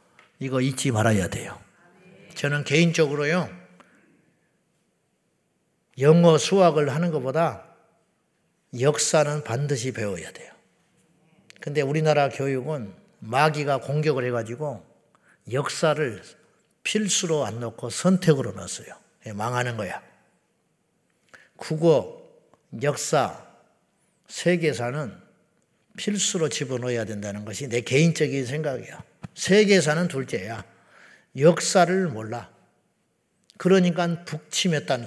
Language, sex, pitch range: Korean, male, 130-180 Hz